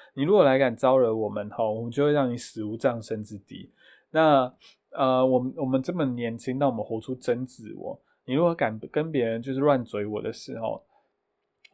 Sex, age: male, 20-39